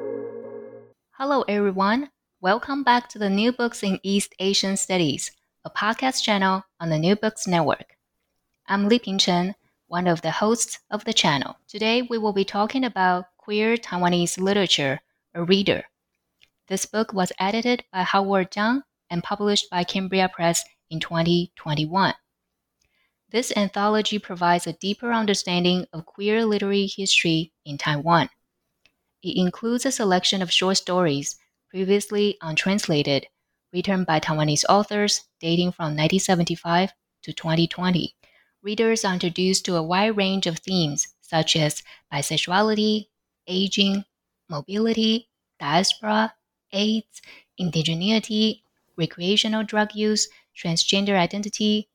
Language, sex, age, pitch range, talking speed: English, female, 20-39, 170-215 Hz, 125 wpm